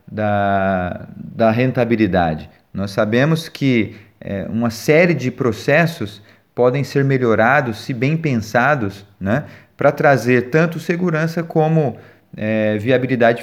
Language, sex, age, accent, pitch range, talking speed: Portuguese, male, 30-49, Brazilian, 105-135 Hz, 105 wpm